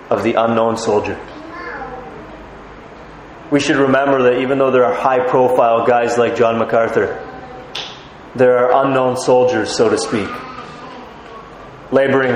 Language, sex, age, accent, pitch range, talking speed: English, male, 30-49, American, 115-130 Hz, 125 wpm